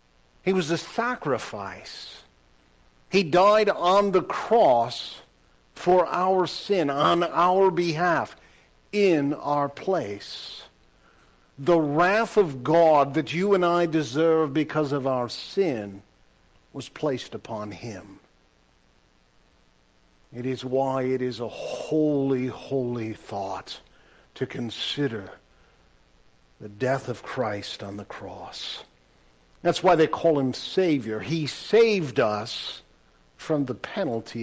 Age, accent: 50-69, American